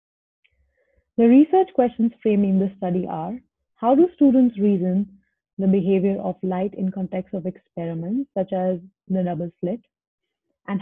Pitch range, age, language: 180-235 Hz, 30-49, English